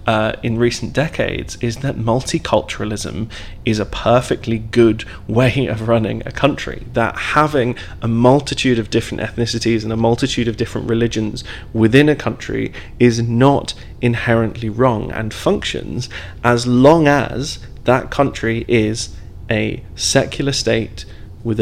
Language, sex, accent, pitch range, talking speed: English, male, British, 110-125 Hz, 135 wpm